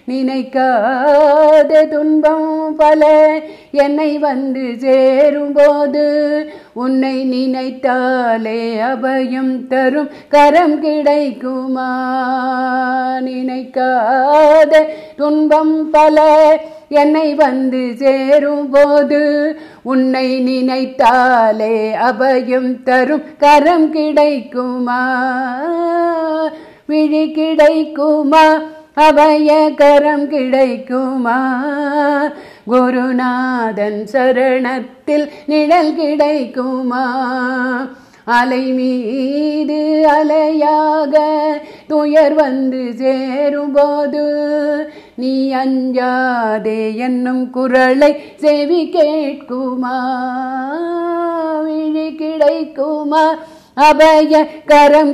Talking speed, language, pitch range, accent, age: 50 wpm, Tamil, 255-300 Hz, native, 50-69